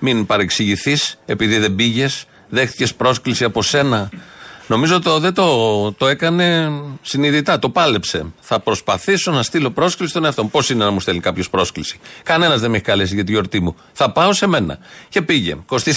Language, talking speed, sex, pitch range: Greek, 180 wpm, male, 115-155 Hz